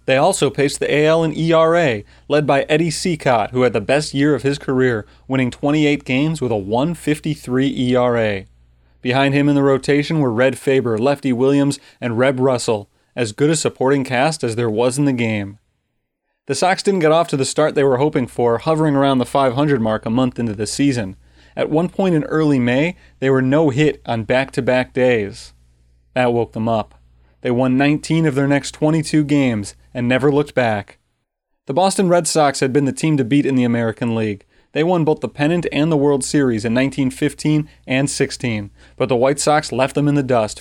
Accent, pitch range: American, 120-145 Hz